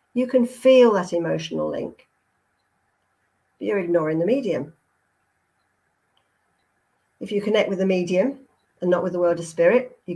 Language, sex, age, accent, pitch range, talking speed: English, female, 50-69, British, 175-245 Hz, 150 wpm